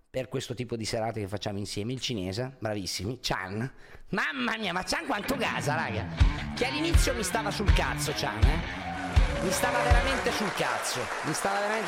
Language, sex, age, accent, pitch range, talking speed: Italian, male, 40-59, native, 110-155 Hz, 175 wpm